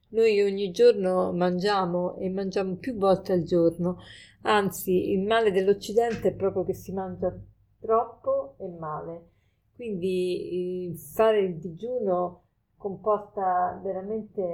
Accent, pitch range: native, 180-210 Hz